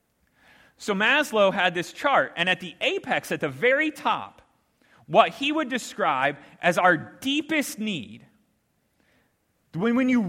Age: 30-49